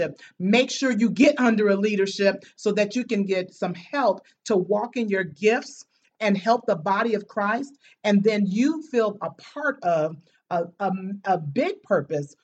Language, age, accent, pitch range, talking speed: English, 40-59, American, 185-235 Hz, 175 wpm